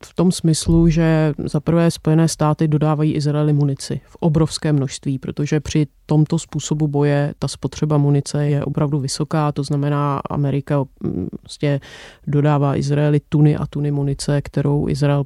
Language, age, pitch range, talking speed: Czech, 30-49, 145-155 Hz, 150 wpm